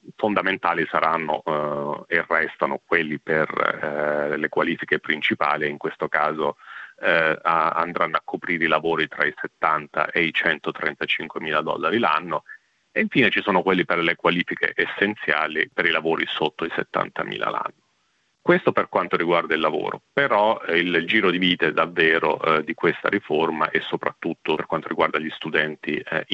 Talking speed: 160 wpm